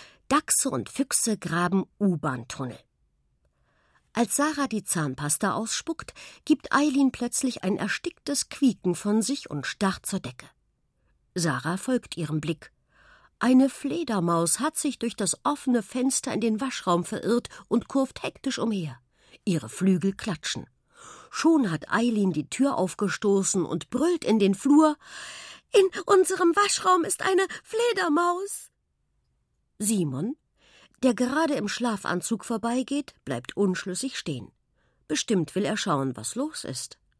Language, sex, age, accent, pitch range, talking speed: German, female, 50-69, German, 175-270 Hz, 125 wpm